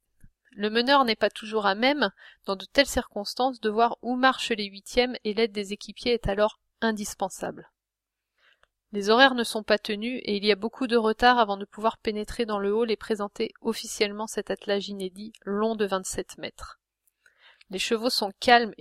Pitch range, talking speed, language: 200-235 Hz, 185 wpm, French